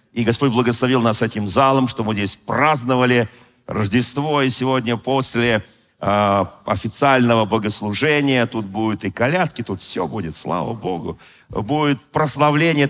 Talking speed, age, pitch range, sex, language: 125 wpm, 40-59, 100-130 Hz, male, Russian